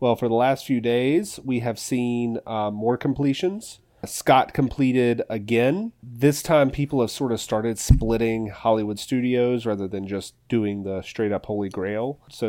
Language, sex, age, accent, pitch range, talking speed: English, male, 30-49, American, 105-130 Hz, 165 wpm